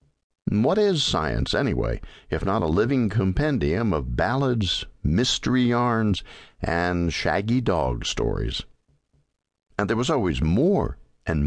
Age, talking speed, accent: 60-79, 120 wpm, American